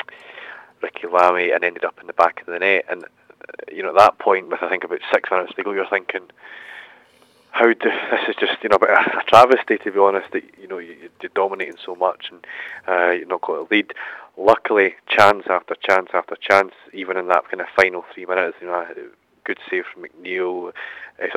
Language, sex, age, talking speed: English, male, 30-49, 220 wpm